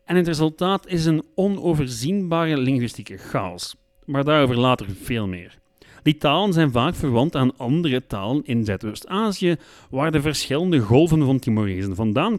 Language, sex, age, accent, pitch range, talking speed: Dutch, male, 40-59, Dutch, 115-175 Hz, 145 wpm